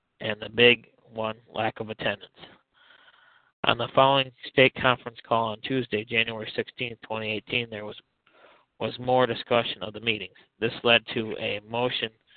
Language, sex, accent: English, male, American